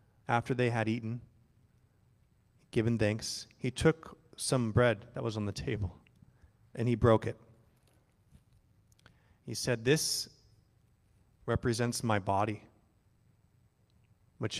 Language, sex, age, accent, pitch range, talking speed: English, male, 30-49, American, 110-125 Hz, 105 wpm